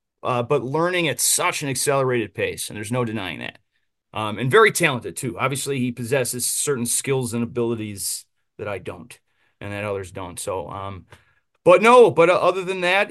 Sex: male